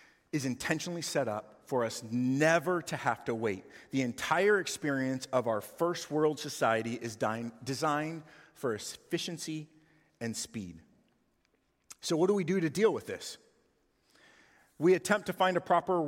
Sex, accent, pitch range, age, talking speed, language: male, American, 140-180 Hz, 40-59, 150 wpm, English